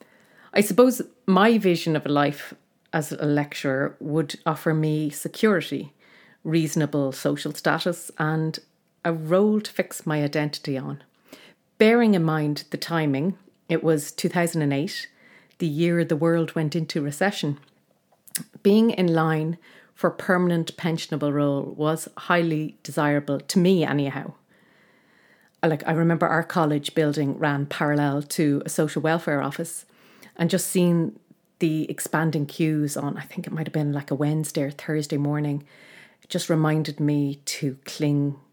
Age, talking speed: 30-49, 140 wpm